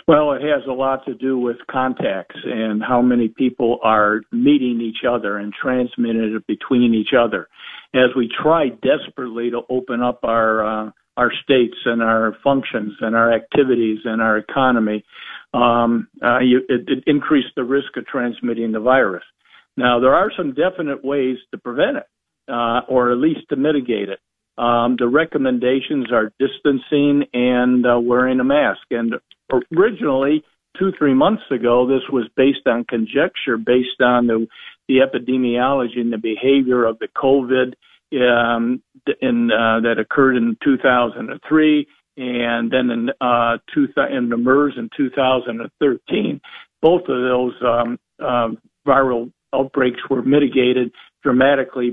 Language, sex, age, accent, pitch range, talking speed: English, male, 60-79, American, 120-135 Hz, 145 wpm